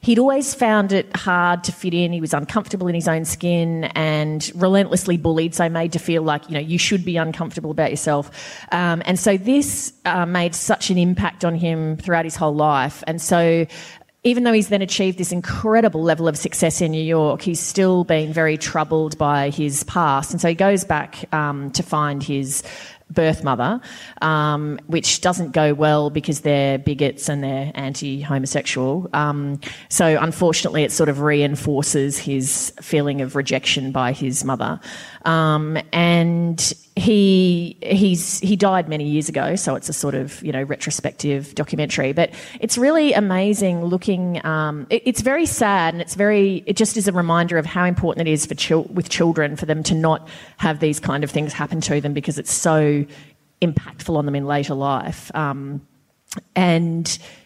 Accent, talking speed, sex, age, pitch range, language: Australian, 180 wpm, female, 30-49, 150-180 Hz, English